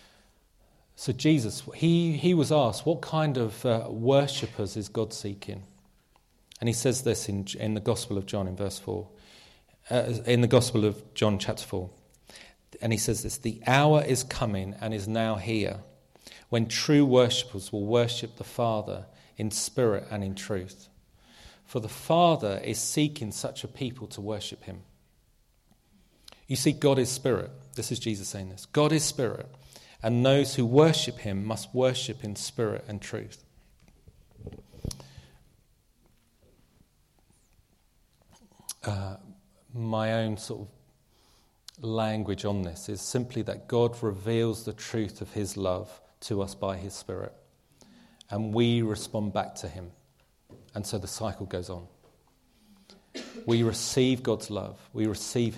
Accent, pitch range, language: British, 100-125 Hz, English